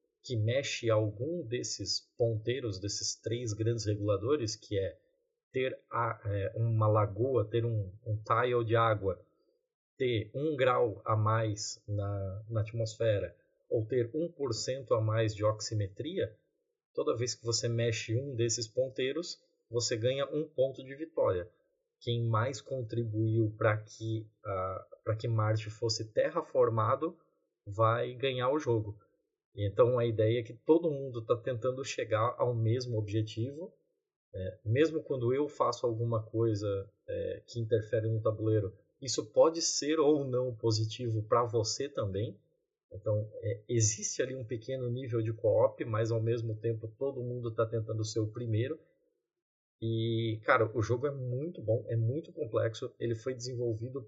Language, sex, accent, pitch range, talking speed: Portuguese, male, Brazilian, 110-130 Hz, 140 wpm